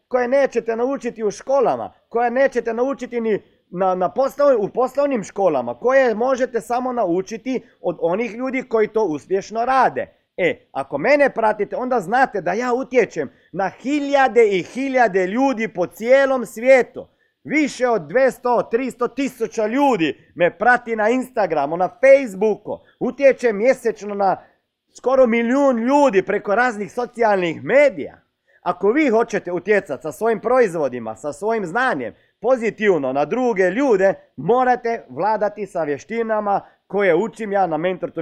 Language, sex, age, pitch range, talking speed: Croatian, male, 40-59, 165-245 Hz, 140 wpm